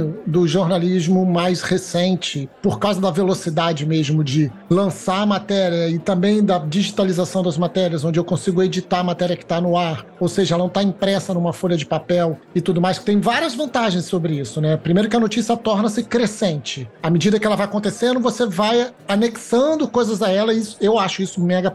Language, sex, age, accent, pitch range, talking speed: Portuguese, male, 40-59, Brazilian, 185-235 Hz, 200 wpm